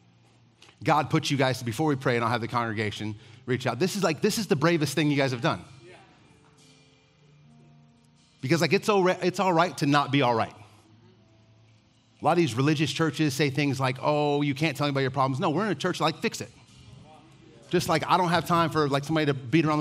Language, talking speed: English, 230 wpm